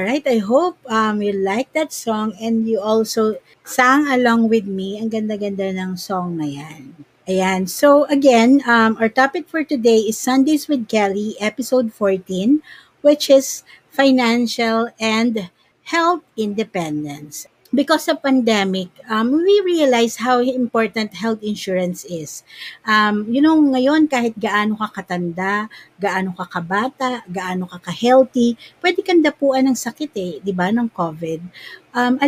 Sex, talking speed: female, 145 wpm